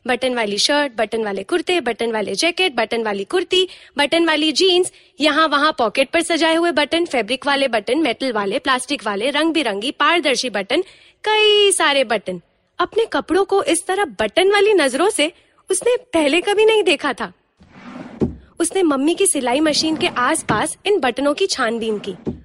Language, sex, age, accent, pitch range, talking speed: Hindi, female, 20-39, native, 245-370 Hz, 170 wpm